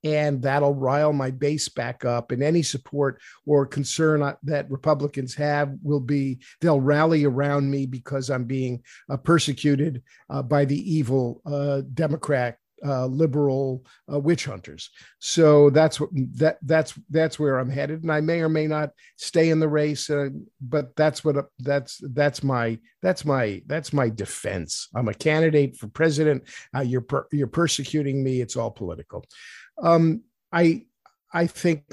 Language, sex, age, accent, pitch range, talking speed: English, male, 50-69, American, 130-155 Hz, 135 wpm